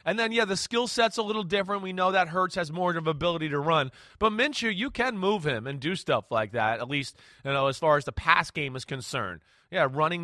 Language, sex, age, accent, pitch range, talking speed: English, male, 30-49, American, 145-205 Hz, 265 wpm